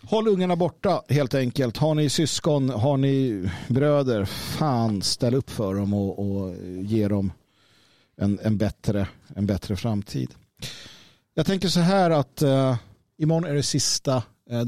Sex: male